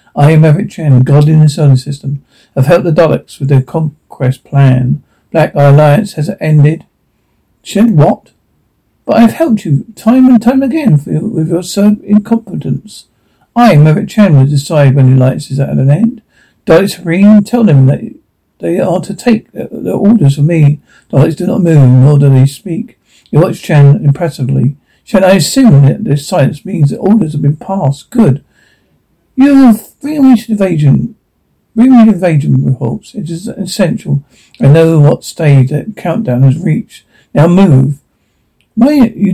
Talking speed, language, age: 170 wpm, English, 50-69